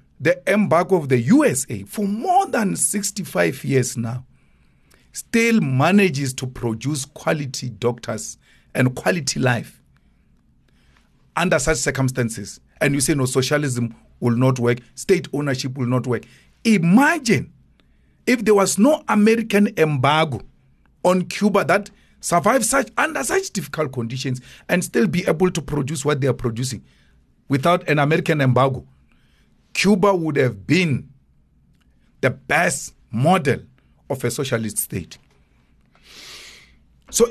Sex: male